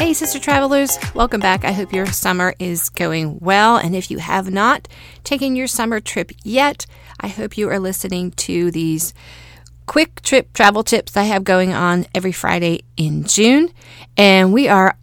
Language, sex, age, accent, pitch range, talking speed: English, female, 40-59, American, 160-200 Hz, 175 wpm